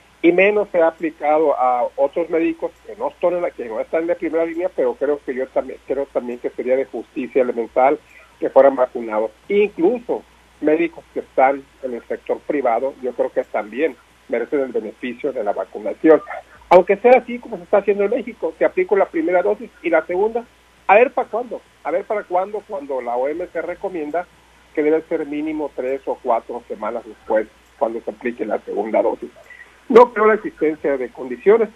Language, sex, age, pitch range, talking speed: Spanish, male, 50-69, 145-205 Hz, 195 wpm